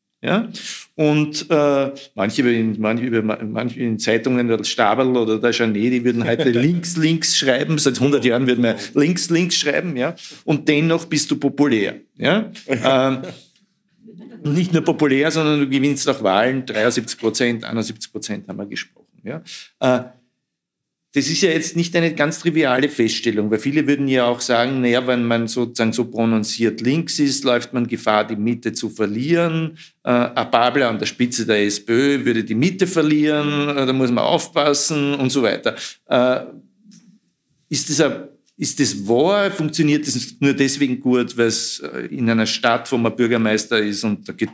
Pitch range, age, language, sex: 115-150 Hz, 50-69, German, male